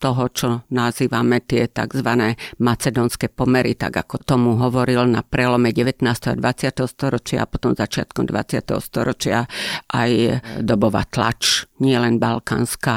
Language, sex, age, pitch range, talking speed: Slovak, female, 50-69, 125-150 Hz, 130 wpm